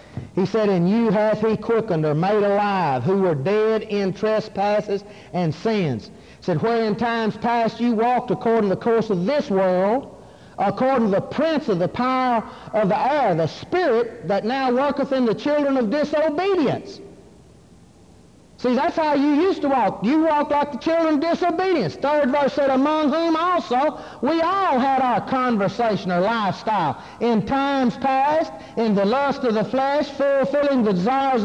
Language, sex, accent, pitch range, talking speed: English, male, American, 225-325 Hz, 170 wpm